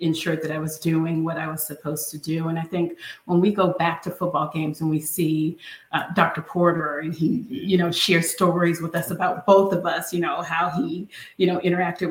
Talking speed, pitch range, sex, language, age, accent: 230 wpm, 170-190 Hz, female, English, 30-49, American